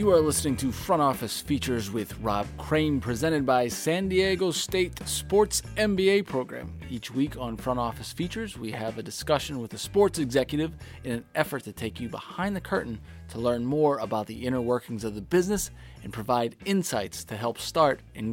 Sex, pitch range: male, 110-150 Hz